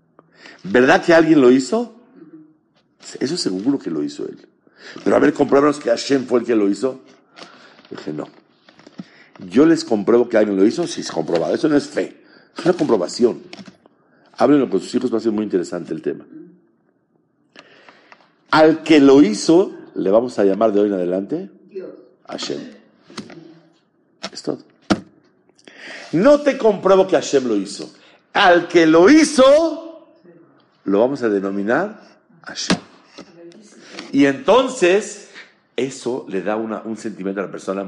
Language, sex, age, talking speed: English, male, 50-69, 150 wpm